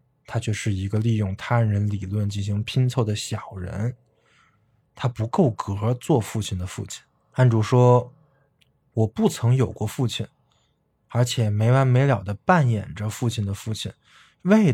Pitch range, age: 105-140 Hz, 20-39